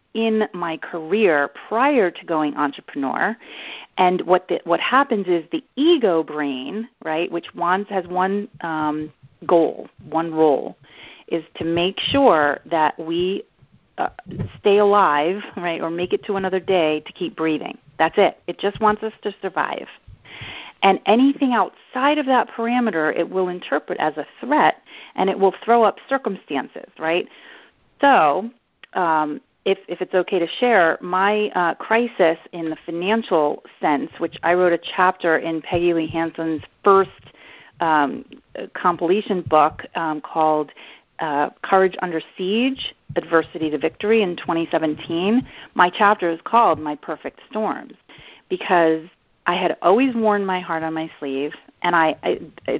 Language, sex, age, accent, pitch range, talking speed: English, female, 40-59, American, 160-205 Hz, 150 wpm